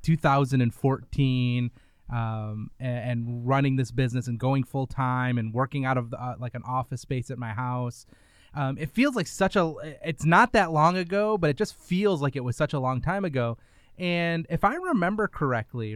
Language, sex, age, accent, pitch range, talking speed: English, male, 20-39, American, 120-155 Hz, 190 wpm